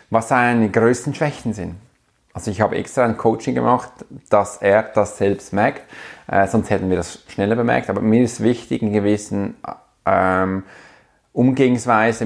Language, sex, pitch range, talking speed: German, male, 100-120 Hz, 155 wpm